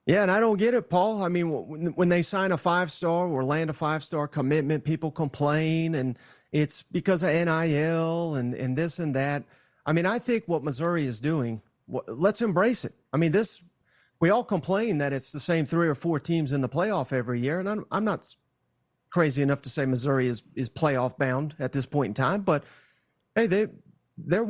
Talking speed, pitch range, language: 205 wpm, 145-195 Hz, English